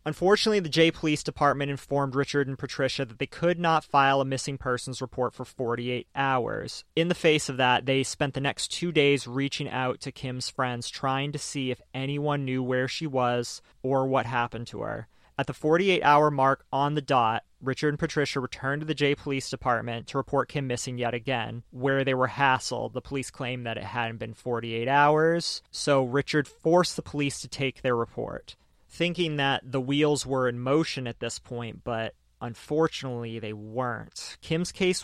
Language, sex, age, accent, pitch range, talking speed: English, male, 30-49, American, 125-145 Hz, 190 wpm